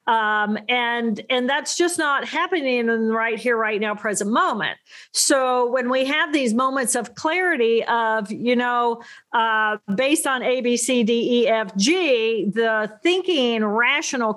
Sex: female